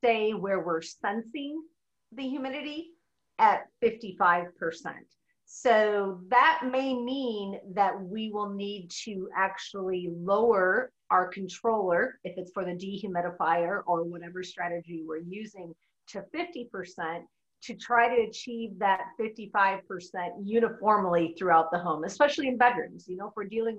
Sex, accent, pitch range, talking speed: female, American, 185-240 Hz, 130 wpm